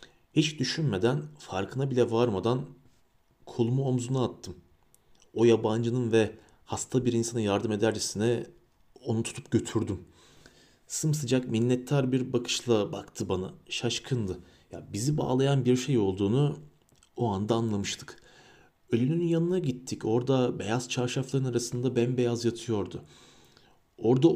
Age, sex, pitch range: 40-59, male, 100-130 Hz